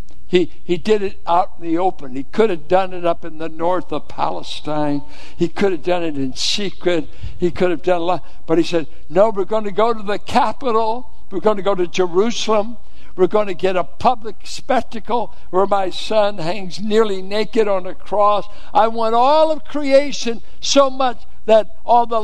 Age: 60-79